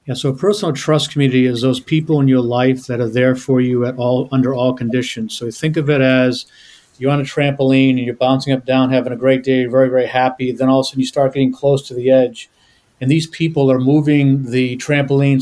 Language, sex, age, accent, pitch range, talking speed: English, male, 40-59, American, 125-135 Hz, 235 wpm